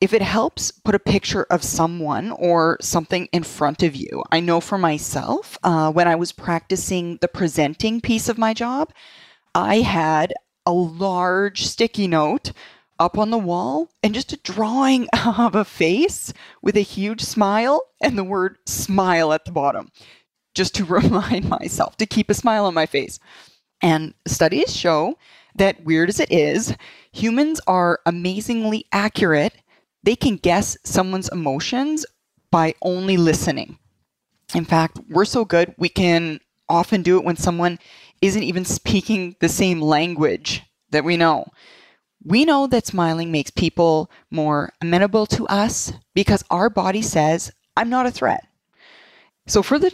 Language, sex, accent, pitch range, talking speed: English, female, American, 170-220 Hz, 155 wpm